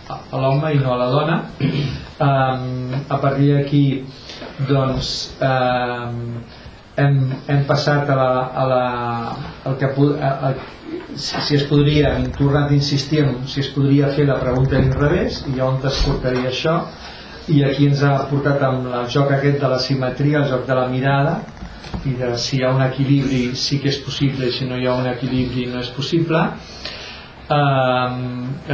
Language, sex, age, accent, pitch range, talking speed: English, male, 40-59, Spanish, 125-140 Hz, 175 wpm